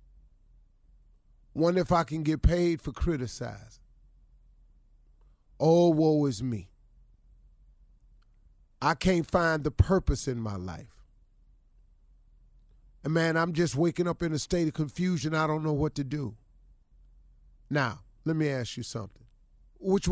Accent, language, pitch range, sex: American, English, 110-160 Hz, male